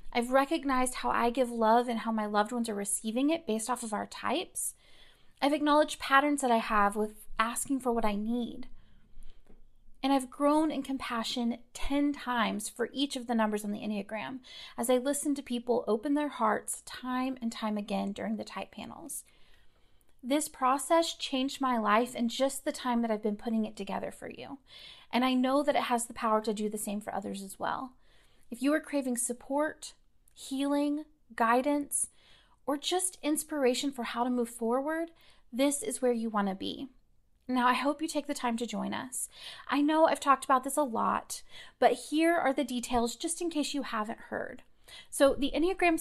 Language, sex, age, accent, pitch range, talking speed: English, female, 30-49, American, 230-285 Hz, 195 wpm